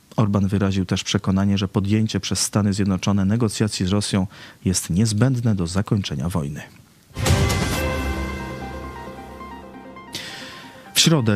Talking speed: 100 wpm